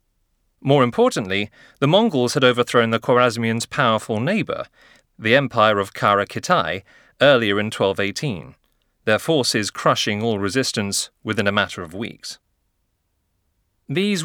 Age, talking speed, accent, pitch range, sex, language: 40-59, 120 wpm, British, 100-130 Hz, male, English